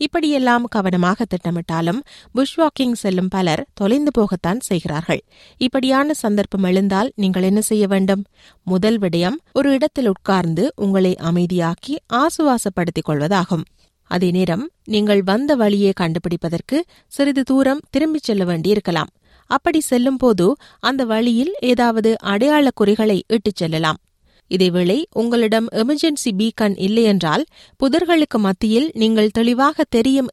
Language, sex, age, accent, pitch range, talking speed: Tamil, female, 30-49, native, 185-260 Hz, 110 wpm